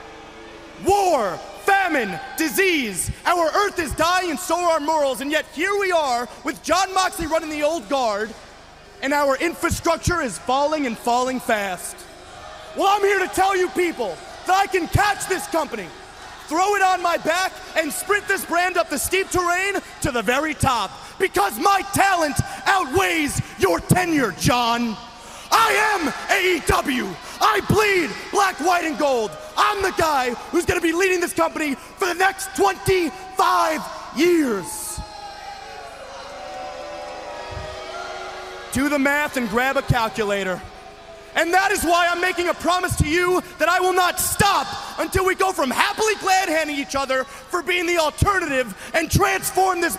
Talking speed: 155 wpm